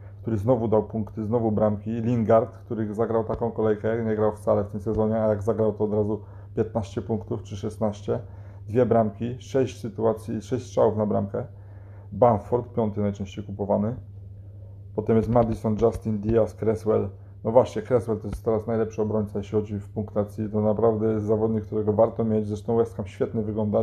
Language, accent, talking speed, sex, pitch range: Polish, native, 175 wpm, male, 105-115 Hz